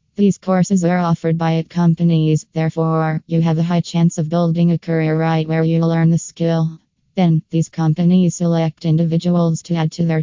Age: 20-39